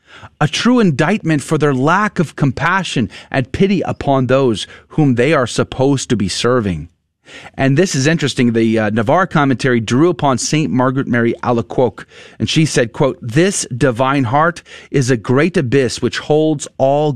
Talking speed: 165 wpm